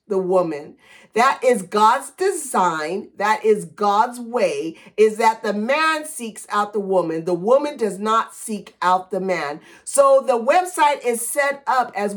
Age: 50-69